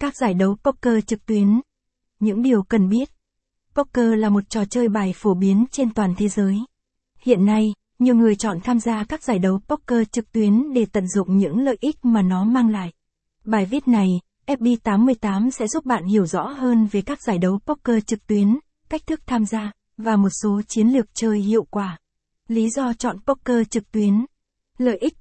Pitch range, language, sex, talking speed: 205-245 Hz, Vietnamese, female, 195 wpm